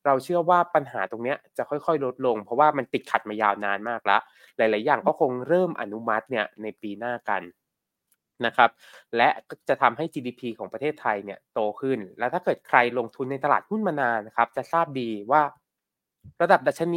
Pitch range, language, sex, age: 110-150 Hz, Thai, male, 20-39